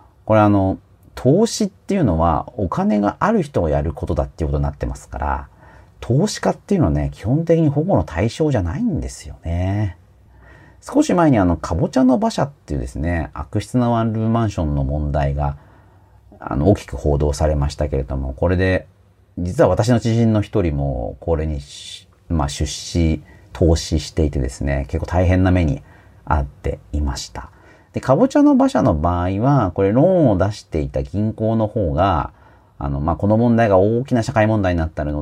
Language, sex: Japanese, male